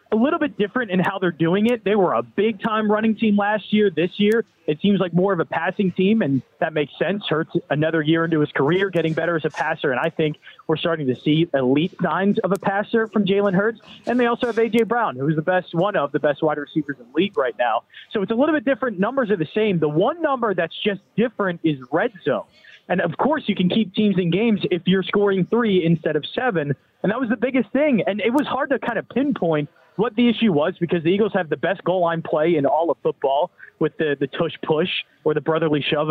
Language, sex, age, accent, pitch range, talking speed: English, male, 30-49, American, 165-215 Hz, 255 wpm